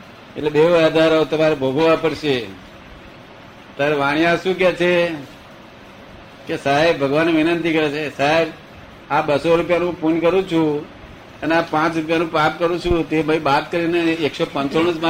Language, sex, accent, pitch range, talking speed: Gujarati, male, native, 150-180 Hz, 120 wpm